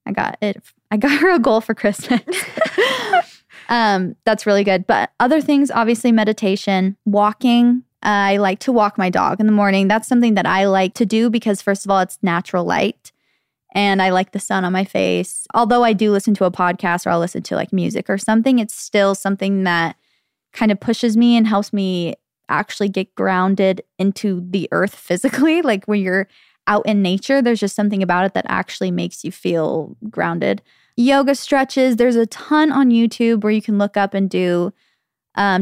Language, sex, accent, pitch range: English, female, American, 195-240 Hz